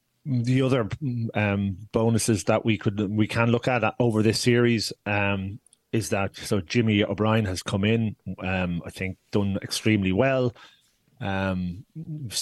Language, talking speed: English, 150 wpm